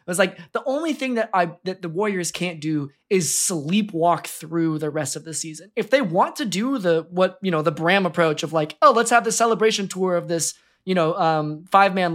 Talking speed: 235 wpm